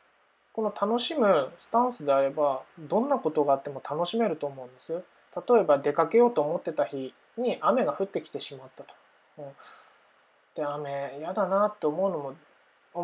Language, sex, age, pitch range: Japanese, male, 20-39, 145-220 Hz